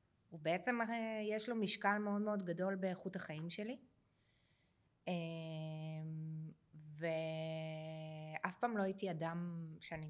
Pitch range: 160-215 Hz